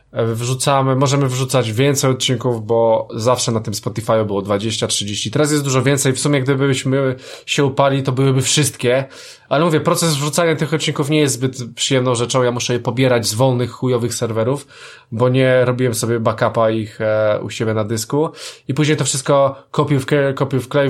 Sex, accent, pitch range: male, native, 125-160 Hz